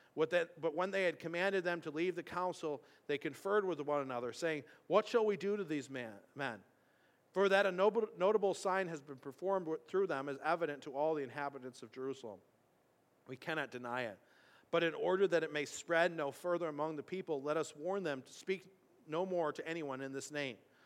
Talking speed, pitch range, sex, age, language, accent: 200 wpm, 135-175 Hz, male, 40-59, English, American